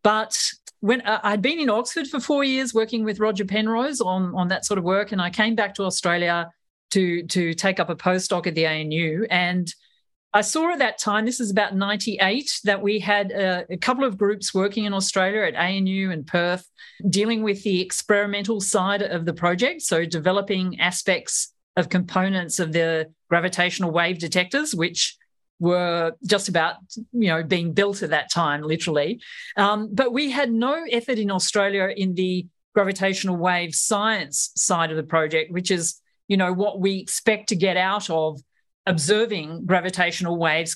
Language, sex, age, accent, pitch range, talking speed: English, female, 40-59, Australian, 175-215 Hz, 180 wpm